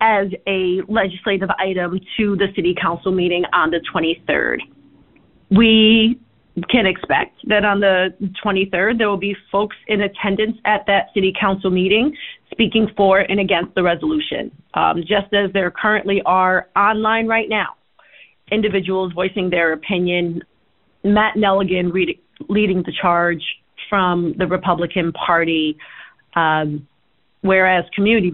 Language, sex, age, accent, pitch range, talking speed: English, female, 30-49, American, 175-215 Hz, 130 wpm